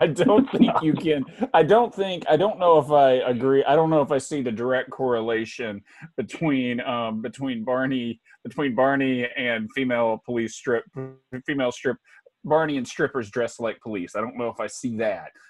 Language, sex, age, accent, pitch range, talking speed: English, male, 30-49, American, 115-140 Hz, 185 wpm